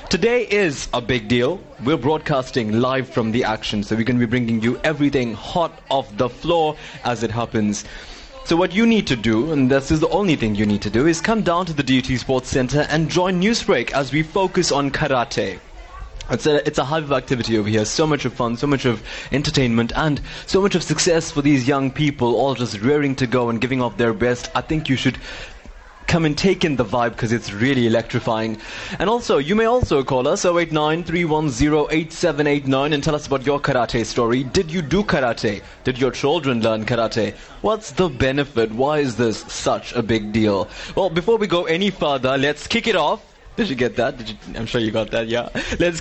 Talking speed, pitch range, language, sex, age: 215 wpm, 120-170 Hz, English, male, 20-39